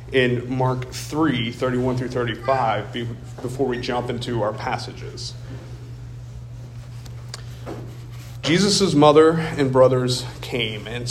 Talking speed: 85 wpm